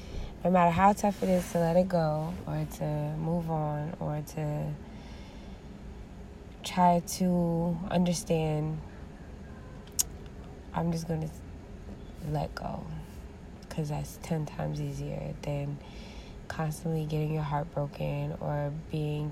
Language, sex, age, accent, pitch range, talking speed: English, female, 20-39, American, 140-165 Hz, 120 wpm